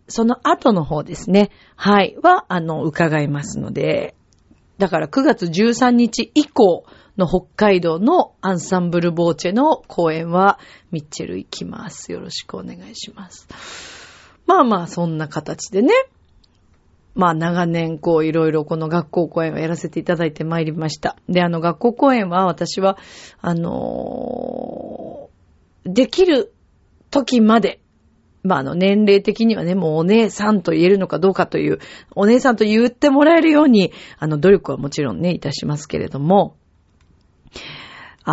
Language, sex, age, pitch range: Japanese, female, 40-59, 160-230 Hz